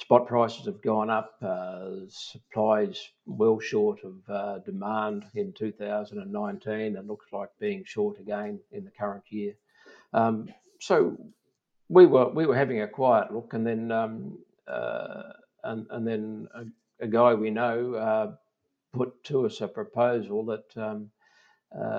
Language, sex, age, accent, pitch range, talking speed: English, male, 60-79, Australian, 105-130 Hz, 155 wpm